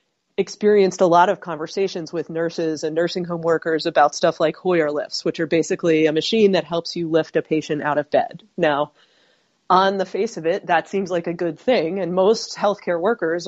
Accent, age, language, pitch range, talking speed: American, 30-49, English, 160-190 Hz, 205 wpm